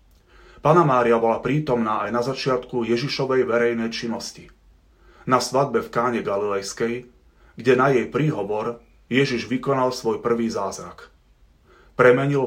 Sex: male